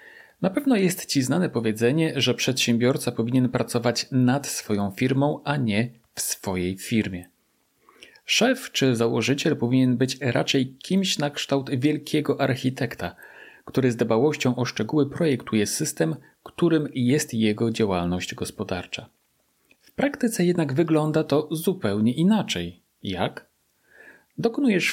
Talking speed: 120 wpm